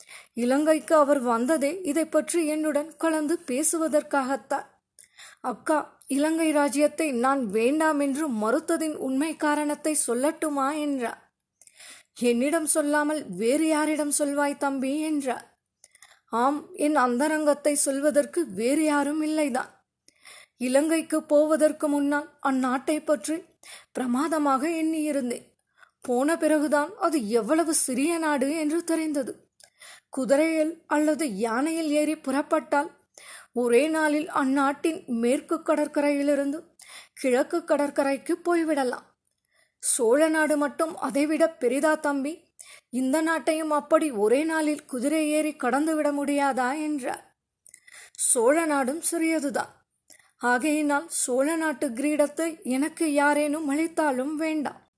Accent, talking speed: native, 90 wpm